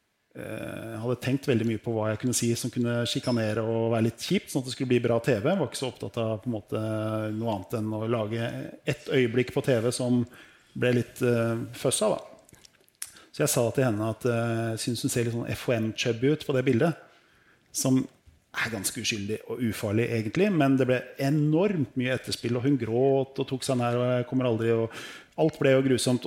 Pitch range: 115-135 Hz